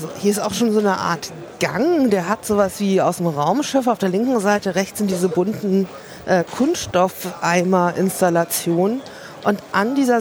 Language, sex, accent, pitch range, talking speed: German, female, German, 180-230 Hz, 165 wpm